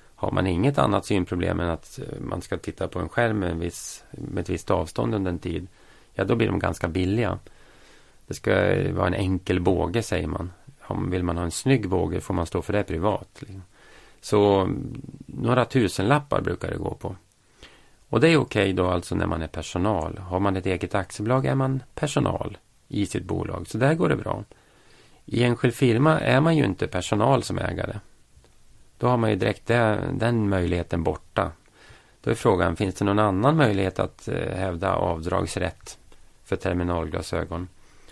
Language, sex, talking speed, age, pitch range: Swedish, male, 180 wpm, 30-49, 90-120 Hz